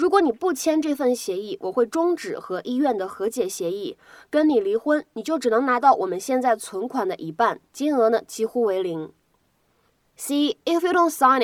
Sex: female